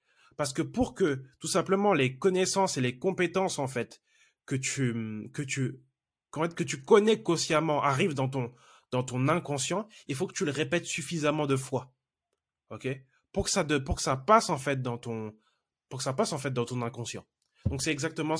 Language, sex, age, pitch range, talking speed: French, male, 20-39, 120-155 Hz, 200 wpm